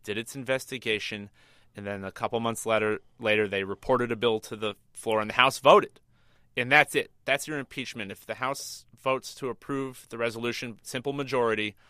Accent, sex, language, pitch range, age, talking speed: American, male, English, 110-135 Hz, 30-49, 185 wpm